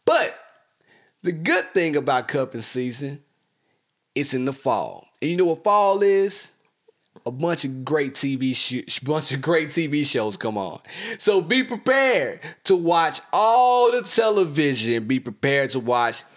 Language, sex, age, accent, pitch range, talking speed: English, male, 30-49, American, 140-220 Hz, 155 wpm